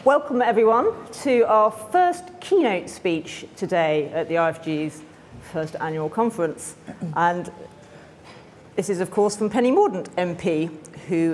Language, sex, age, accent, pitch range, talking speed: English, female, 40-59, British, 165-215 Hz, 125 wpm